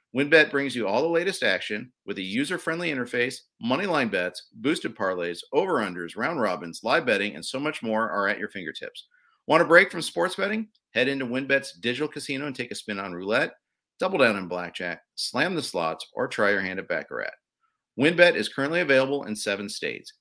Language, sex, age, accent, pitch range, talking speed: English, male, 40-59, American, 110-185 Hz, 195 wpm